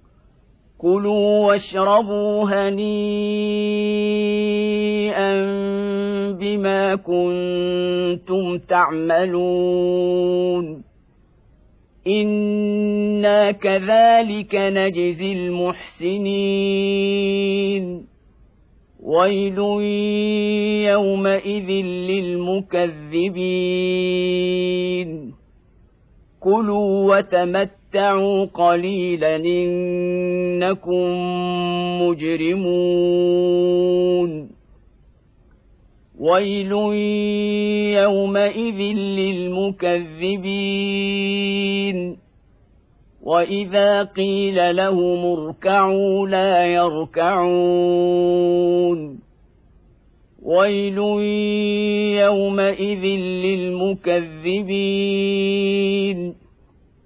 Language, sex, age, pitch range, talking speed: Arabic, male, 50-69, 180-200 Hz, 30 wpm